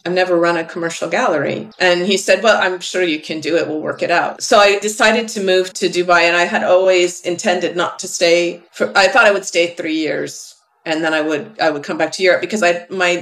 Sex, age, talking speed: female, 40-59, 255 wpm